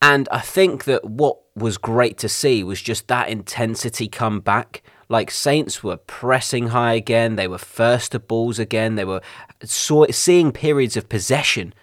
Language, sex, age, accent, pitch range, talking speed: English, male, 20-39, British, 100-125 Hz, 165 wpm